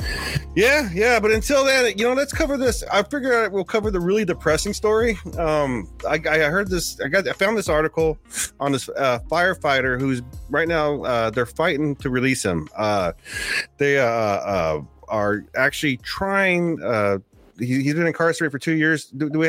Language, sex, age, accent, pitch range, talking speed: English, male, 30-49, American, 120-165 Hz, 185 wpm